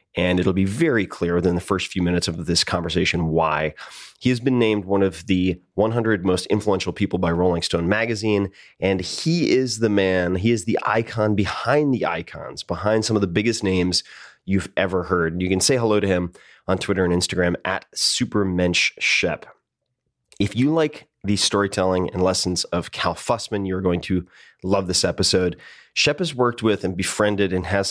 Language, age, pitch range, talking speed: English, 30-49, 90-105 Hz, 185 wpm